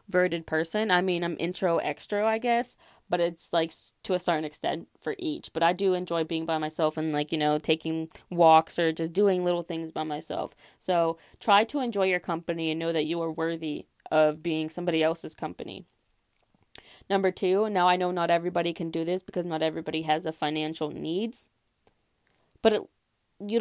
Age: 20-39